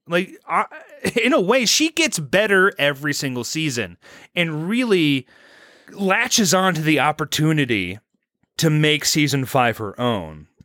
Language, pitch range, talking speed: English, 145-190 Hz, 130 wpm